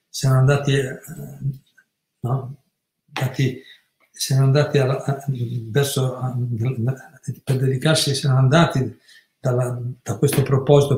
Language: Italian